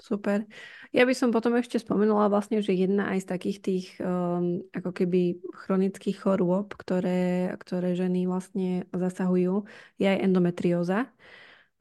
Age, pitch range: 20-39, 180-195 Hz